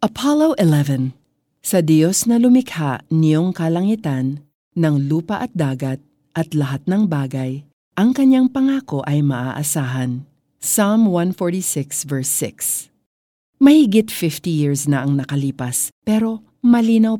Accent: native